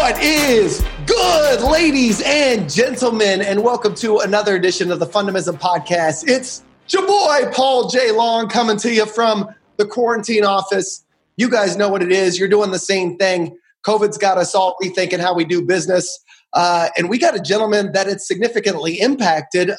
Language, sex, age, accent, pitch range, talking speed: English, male, 30-49, American, 170-220 Hz, 175 wpm